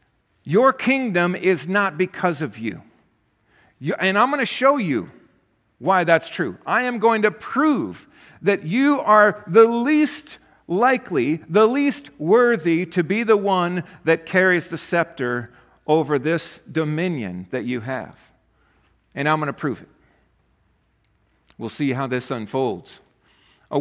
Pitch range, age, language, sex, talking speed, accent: 145-190 Hz, 50-69, English, male, 145 wpm, American